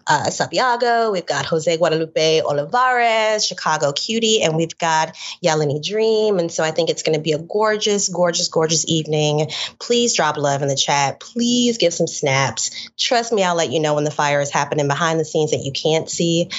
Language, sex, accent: English, female, American